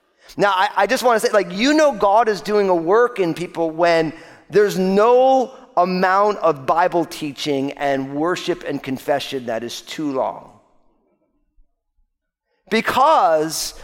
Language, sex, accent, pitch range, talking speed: English, male, American, 175-245 Hz, 145 wpm